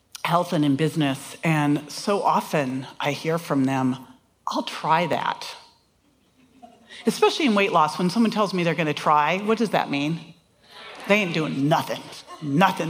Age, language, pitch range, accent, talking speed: 40-59, English, 165-230 Hz, American, 165 wpm